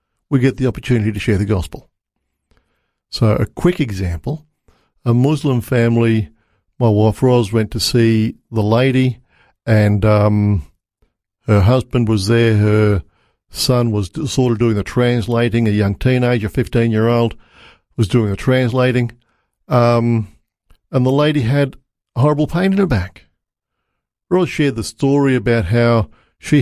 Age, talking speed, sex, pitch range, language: 50-69, 140 wpm, male, 105-140 Hz, English